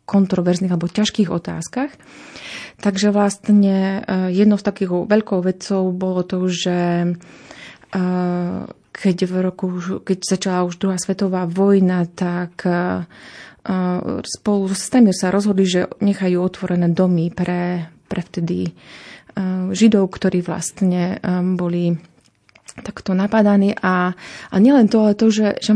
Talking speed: 120 wpm